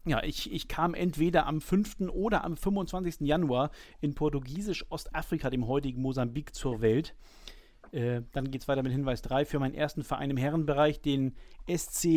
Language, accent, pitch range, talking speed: German, German, 130-165 Hz, 170 wpm